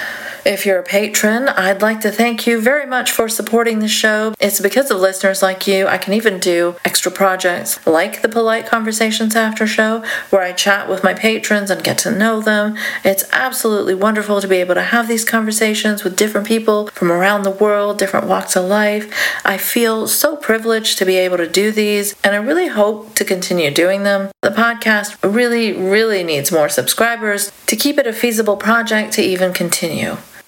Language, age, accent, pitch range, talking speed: English, 40-59, American, 190-225 Hz, 195 wpm